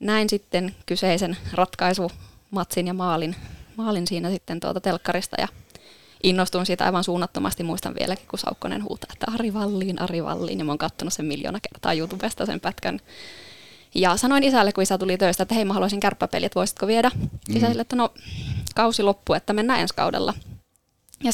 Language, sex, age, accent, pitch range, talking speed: Finnish, female, 20-39, native, 180-210 Hz, 175 wpm